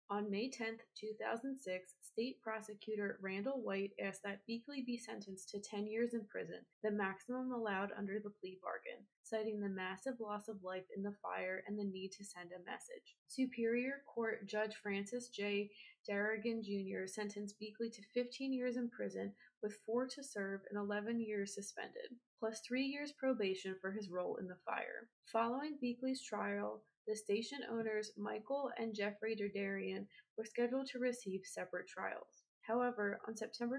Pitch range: 200-245 Hz